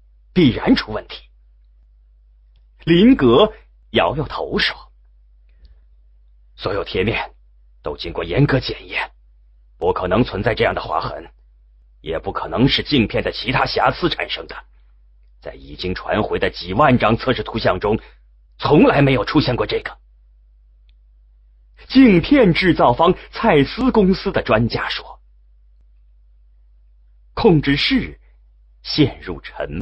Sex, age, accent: male, 30-49, Chinese